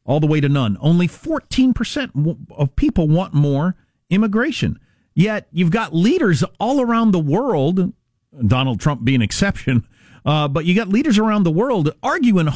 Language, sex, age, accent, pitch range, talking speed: English, male, 40-59, American, 145-220 Hz, 165 wpm